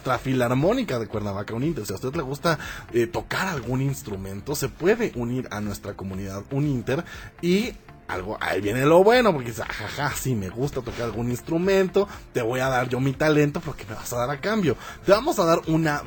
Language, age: Spanish, 30-49